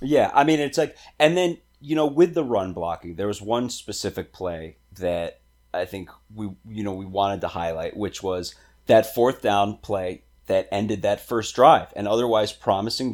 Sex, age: male, 30-49